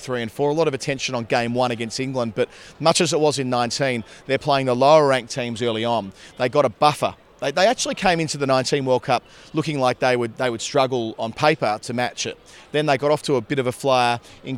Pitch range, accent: 120-145 Hz, Australian